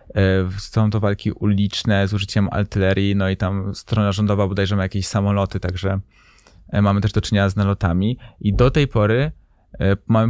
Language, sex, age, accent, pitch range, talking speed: Polish, male, 20-39, native, 95-115 Hz, 165 wpm